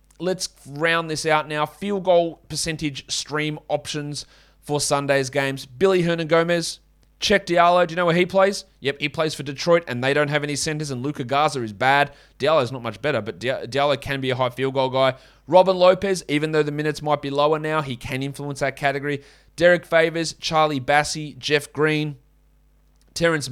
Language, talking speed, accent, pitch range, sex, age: English, 190 wpm, Australian, 130-160 Hz, male, 30-49